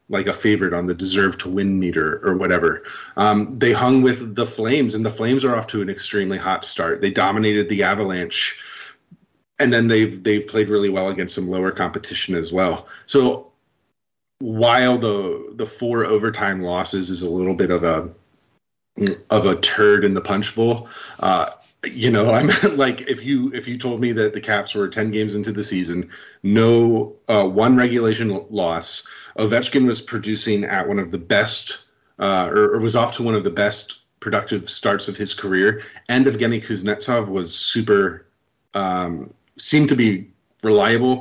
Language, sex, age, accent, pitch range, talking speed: English, male, 30-49, American, 100-115 Hz, 180 wpm